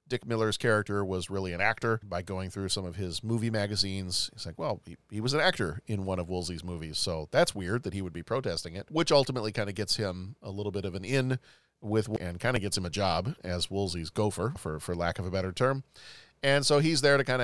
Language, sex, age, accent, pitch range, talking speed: English, male, 40-59, American, 95-130 Hz, 250 wpm